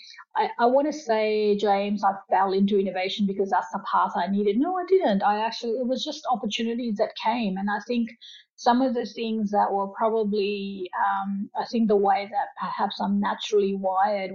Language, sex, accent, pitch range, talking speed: English, female, Australian, 195-220 Hz, 195 wpm